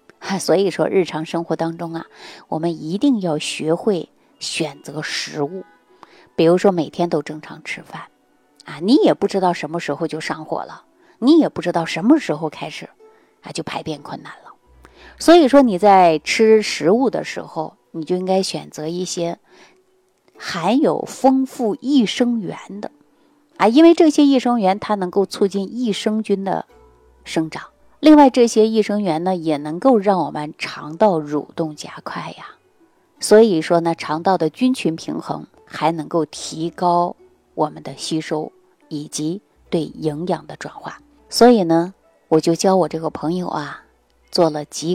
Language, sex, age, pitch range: Chinese, female, 30-49, 160-210 Hz